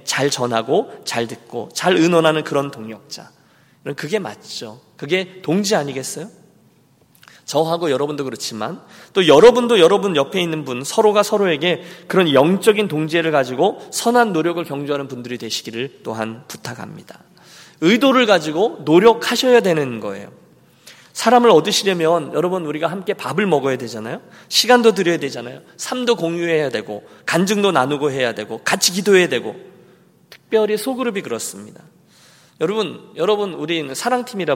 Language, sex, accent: Korean, male, native